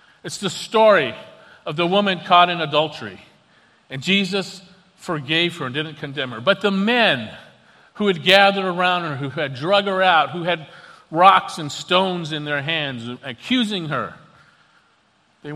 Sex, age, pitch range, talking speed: male, 50-69, 155-200 Hz, 160 wpm